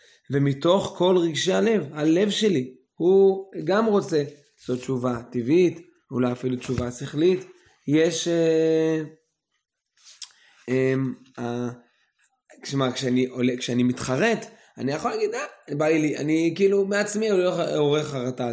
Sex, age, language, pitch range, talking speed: male, 20-39, Hebrew, 130-170 Hz, 130 wpm